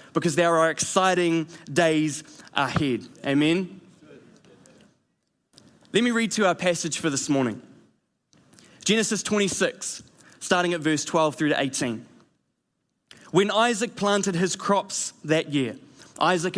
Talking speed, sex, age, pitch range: 120 wpm, male, 20-39, 160-195 Hz